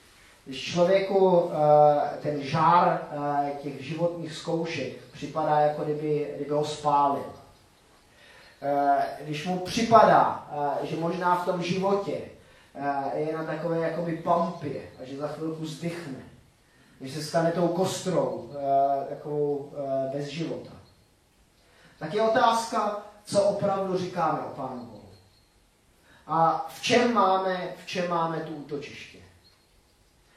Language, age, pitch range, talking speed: Czech, 30-49, 145-190 Hz, 125 wpm